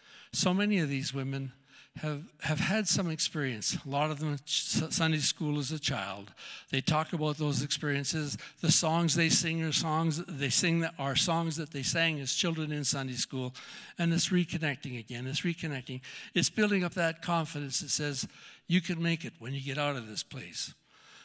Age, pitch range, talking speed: 60-79, 135-165 Hz, 190 wpm